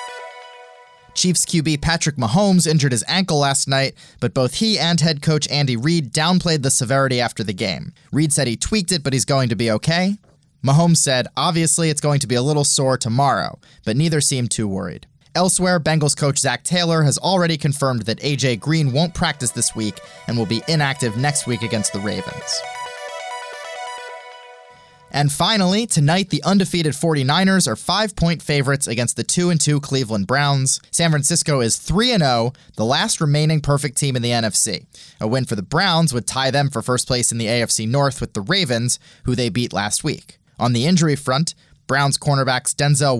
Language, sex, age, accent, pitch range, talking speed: English, male, 20-39, American, 120-160 Hz, 185 wpm